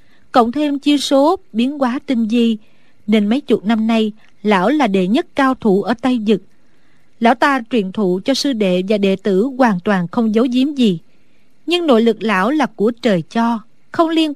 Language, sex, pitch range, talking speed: Vietnamese, female, 210-270 Hz, 200 wpm